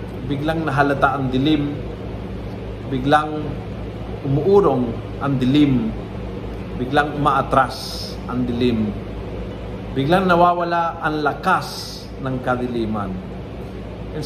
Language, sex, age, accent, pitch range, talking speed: Filipino, male, 50-69, native, 115-155 Hz, 80 wpm